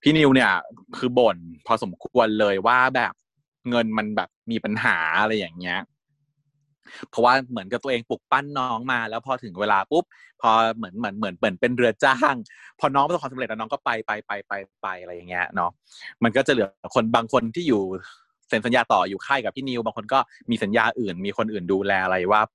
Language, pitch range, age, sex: Thai, 105-140 Hz, 20-39, male